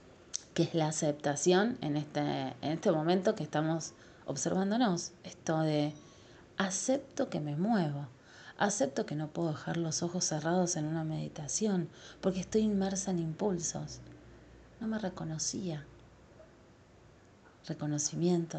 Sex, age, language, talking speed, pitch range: female, 30-49, Spanish, 120 wpm, 150-185 Hz